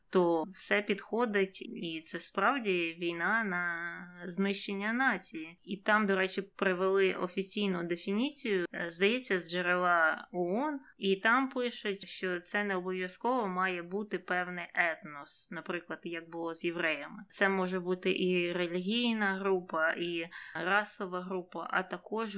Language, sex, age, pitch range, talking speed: Ukrainian, female, 20-39, 175-200 Hz, 130 wpm